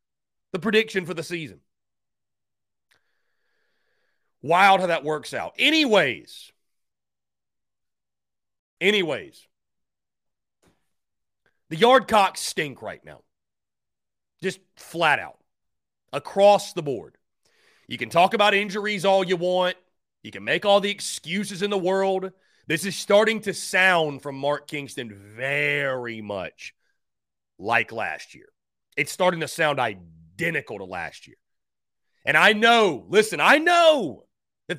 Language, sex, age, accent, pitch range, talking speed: English, male, 40-59, American, 145-210 Hz, 120 wpm